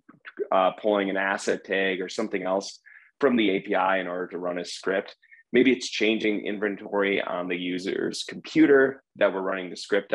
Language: English